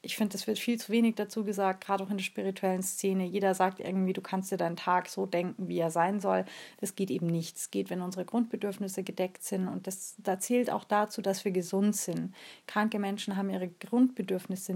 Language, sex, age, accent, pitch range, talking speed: German, female, 30-49, German, 180-215 Hz, 220 wpm